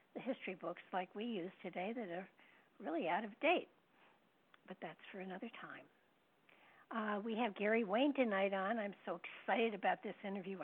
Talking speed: 175 wpm